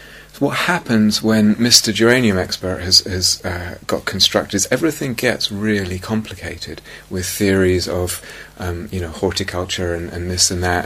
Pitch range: 90-115 Hz